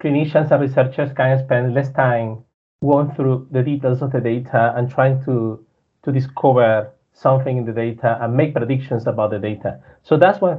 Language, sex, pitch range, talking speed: English, male, 120-150 Hz, 180 wpm